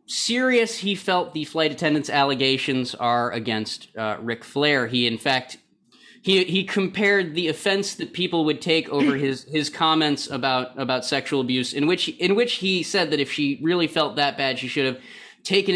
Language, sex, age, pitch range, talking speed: English, male, 20-39, 130-175 Hz, 185 wpm